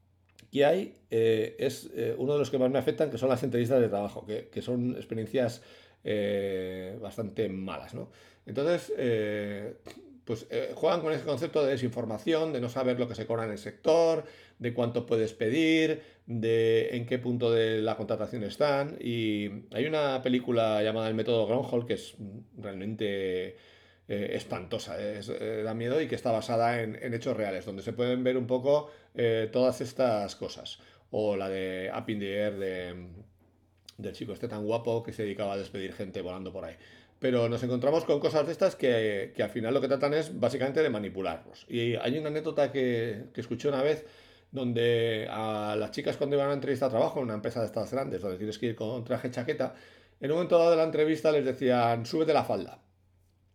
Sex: male